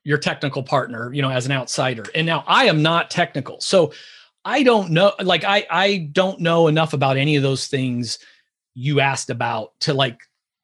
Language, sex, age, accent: English, male, 30-49, American